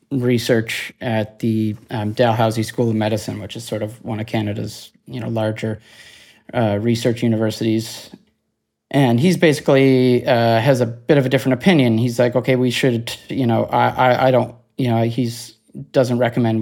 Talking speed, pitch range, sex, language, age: 175 wpm, 110-130 Hz, male, English, 30-49